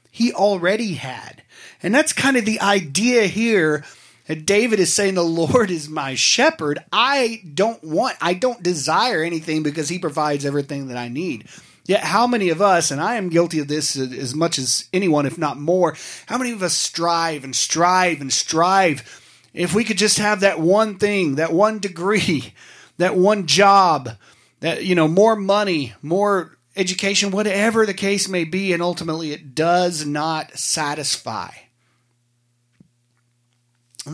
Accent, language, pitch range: American, English, 135-190 Hz